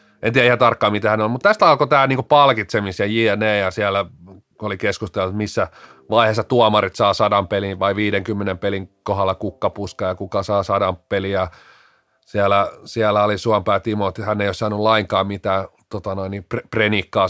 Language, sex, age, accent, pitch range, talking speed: Finnish, male, 30-49, native, 100-135 Hz, 170 wpm